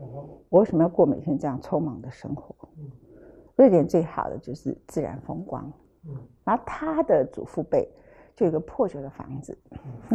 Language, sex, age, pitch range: Chinese, female, 50-69, 155-230 Hz